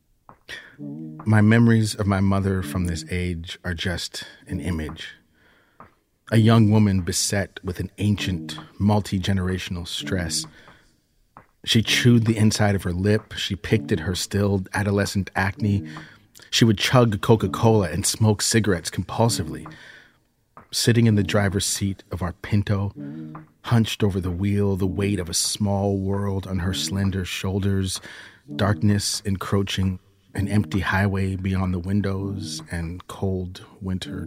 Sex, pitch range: male, 85-100 Hz